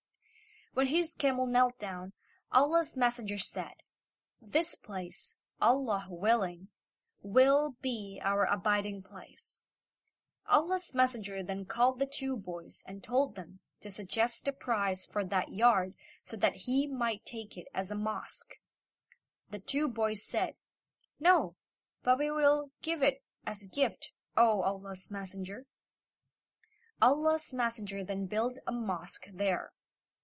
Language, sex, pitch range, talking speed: English, female, 195-260 Hz, 130 wpm